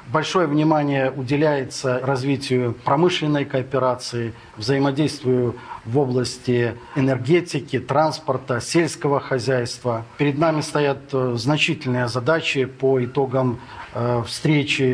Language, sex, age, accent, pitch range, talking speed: Russian, male, 40-59, native, 125-145 Hz, 85 wpm